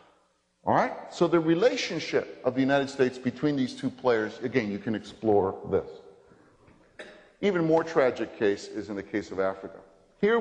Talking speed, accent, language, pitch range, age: 165 wpm, American, English, 110-170 Hz, 50-69